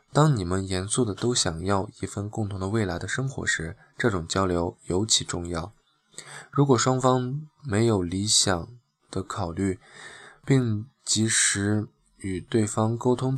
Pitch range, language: 95-120 Hz, Chinese